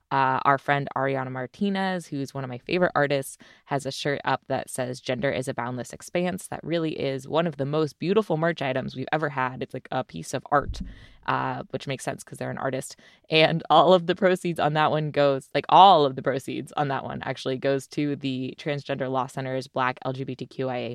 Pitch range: 130-170 Hz